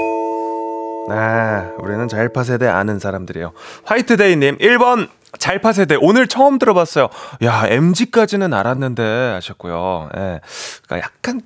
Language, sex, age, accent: Korean, male, 30-49, native